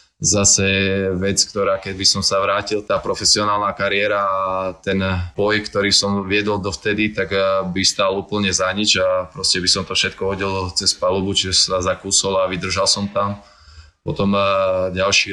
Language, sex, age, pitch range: Slovak, male, 20-39, 90-95 Hz